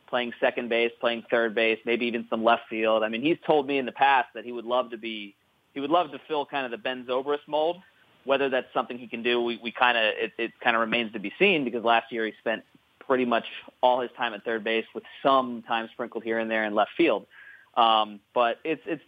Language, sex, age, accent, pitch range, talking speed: English, male, 30-49, American, 115-140 Hz, 260 wpm